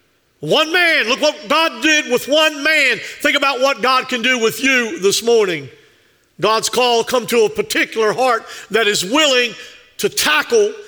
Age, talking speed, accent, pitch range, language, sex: 50-69, 170 wpm, American, 225-285 Hz, English, male